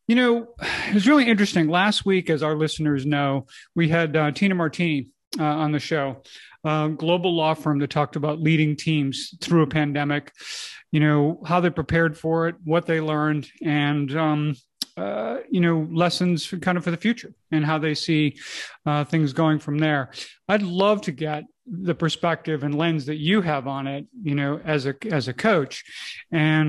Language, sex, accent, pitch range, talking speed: English, male, American, 145-170 Hz, 190 wpm